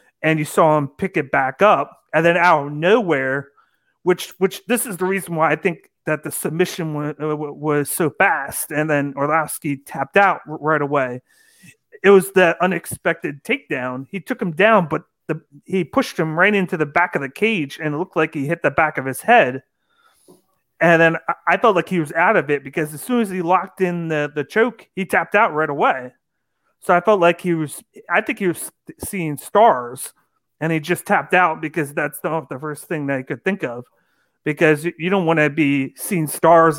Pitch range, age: 150-185 Hz, 30-49